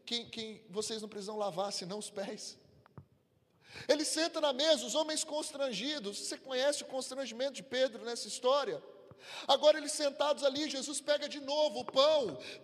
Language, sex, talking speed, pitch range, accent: Portuguese, male, 160 wpm, 160-270 Hz, Brazilian